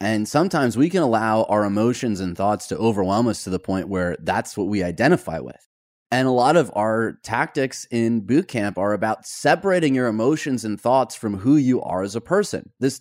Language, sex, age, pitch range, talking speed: English, male, 30-49, 110-160 Hz, 210 wpm